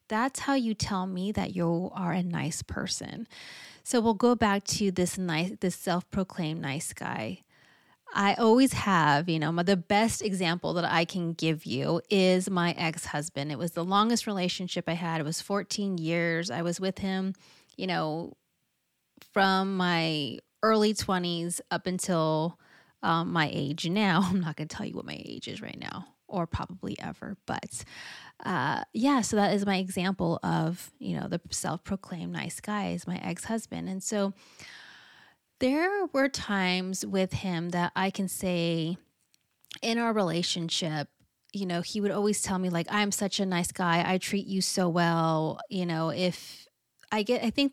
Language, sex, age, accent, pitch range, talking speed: English, female, 30-49, American, 170-200 Hz, 175 wpm